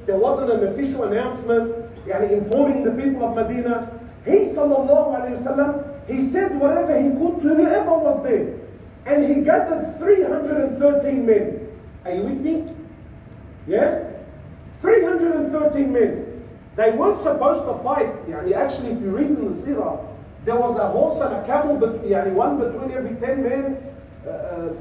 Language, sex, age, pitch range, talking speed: English, male, 40-59, 195-290 Hz, 150 wpm